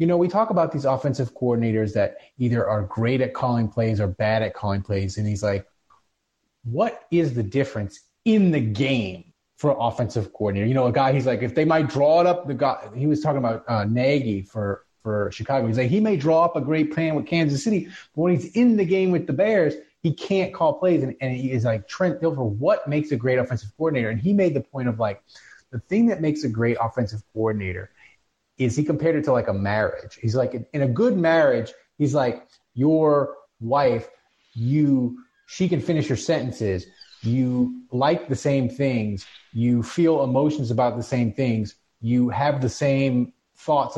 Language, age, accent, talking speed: English, 30-49, American, 205 wpm